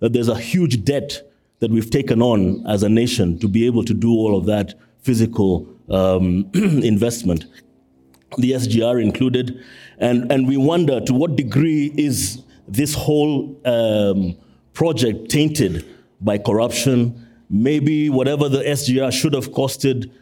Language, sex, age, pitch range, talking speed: English, male, 30-49, 115-140 Hz, 140 wpm